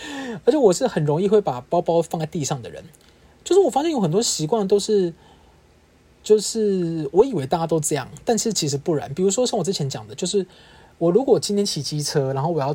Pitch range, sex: 150-215 Hz, male